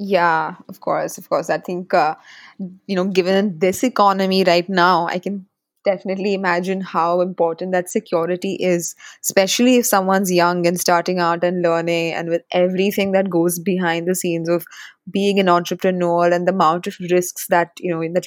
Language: English